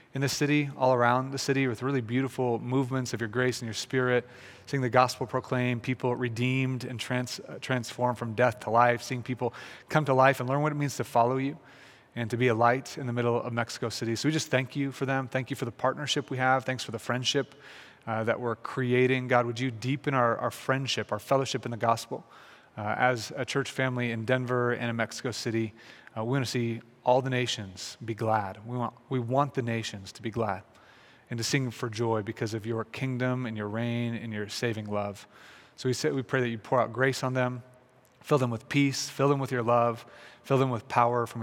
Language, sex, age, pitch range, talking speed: English, male, 30-49, 115-130 Hz, 230 wpm